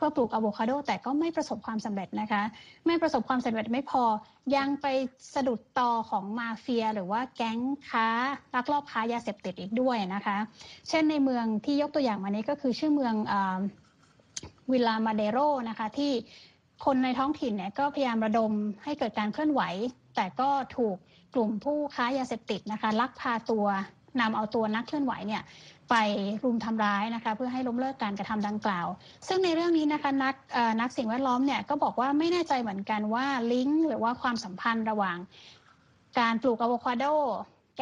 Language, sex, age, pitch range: Thai, female, 20-39, 215-265 Hz